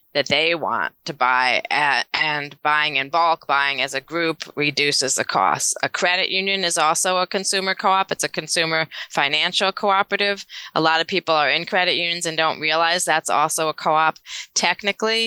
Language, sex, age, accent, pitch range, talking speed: English, female, 20-39, American, 145-170 Hz, 180 wpm